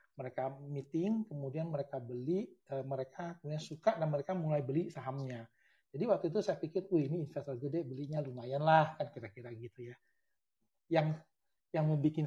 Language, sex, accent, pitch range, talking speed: Indonesian, male, native, 135-170 Hz, 155 wpm